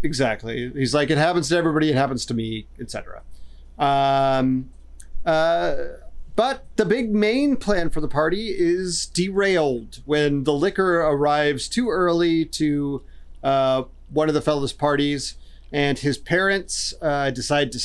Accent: American